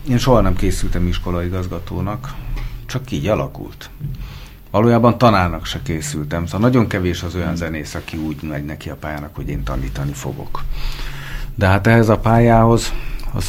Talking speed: 150 wpm